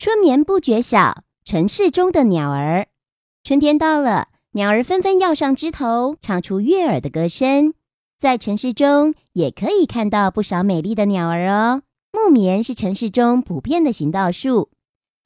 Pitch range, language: 190-280 Hz, Chinese